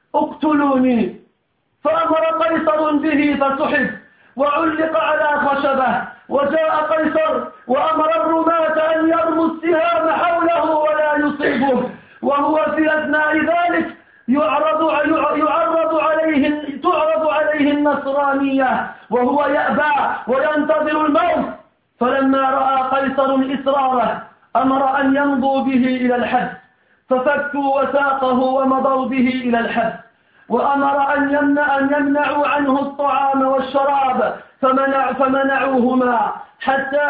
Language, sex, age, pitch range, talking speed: French, male, 50-69, 265-300 Hz, 85 wpm